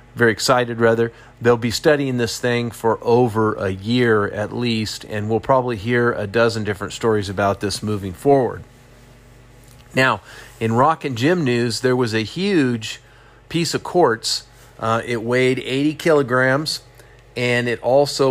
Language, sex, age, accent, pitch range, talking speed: English, male, 40-59, American, 115-130 Hz, 155 wpm